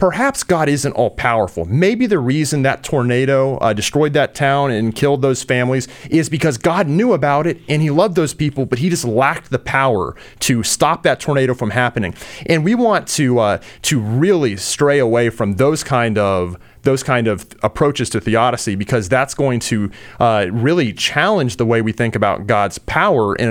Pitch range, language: 115-145 Hz, English